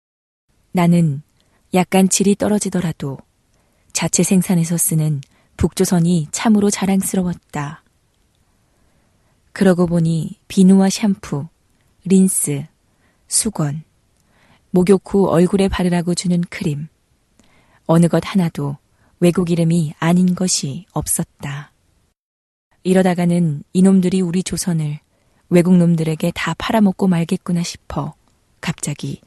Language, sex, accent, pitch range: Korean, female, native, 155-185 Hz